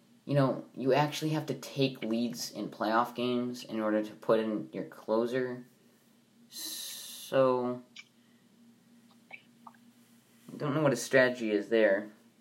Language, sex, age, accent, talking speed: English, male, 20-39, American, 130 wpm